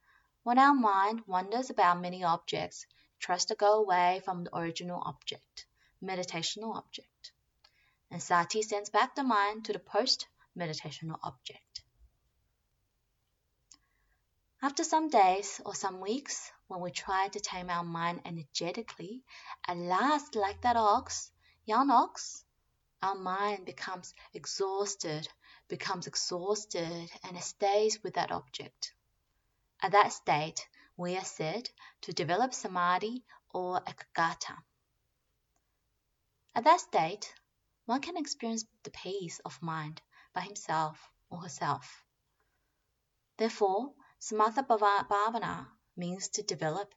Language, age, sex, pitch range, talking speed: English, 20-39, female, 175-220 Hz, 120 wpm